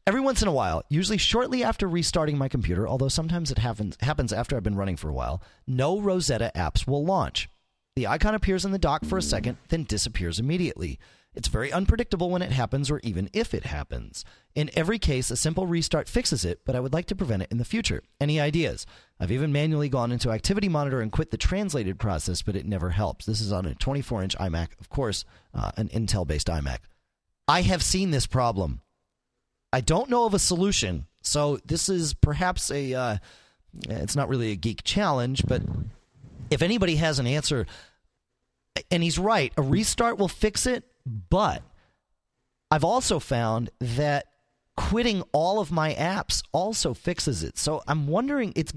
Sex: male